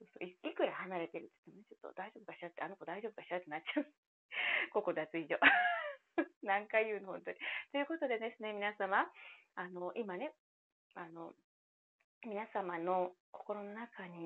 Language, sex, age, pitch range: Japanese, female, 30-49, 180-270 Hz